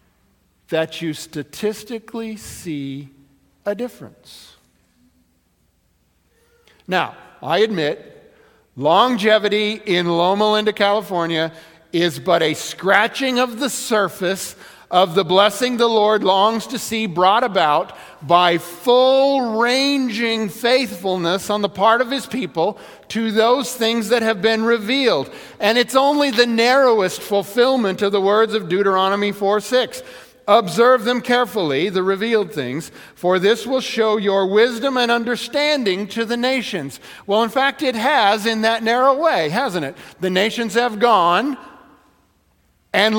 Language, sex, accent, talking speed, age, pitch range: English, male, American, 130 wpm, 50-69, 185-245 Hz